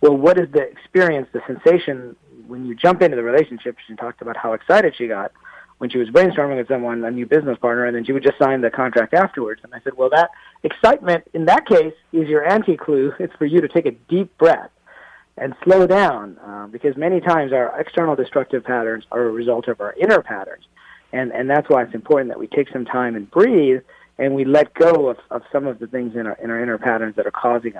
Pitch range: 120-165 Hz